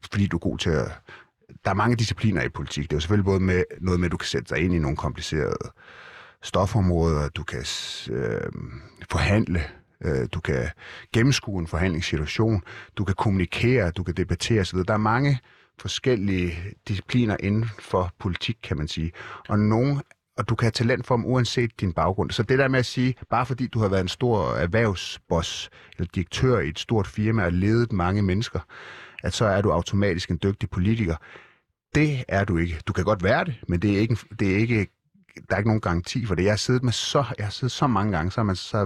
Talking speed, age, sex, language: 205 wpm, 30-49, male, Danish